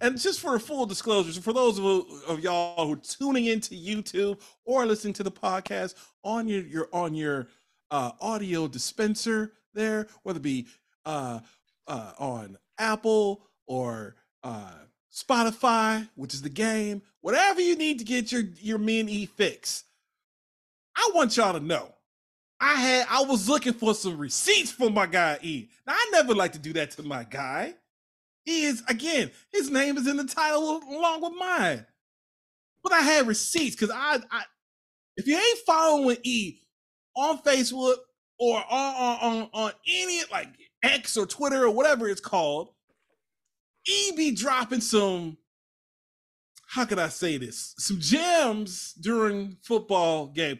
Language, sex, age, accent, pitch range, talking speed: English, male, 40-59, American, 185-275 Hz, 160 wpm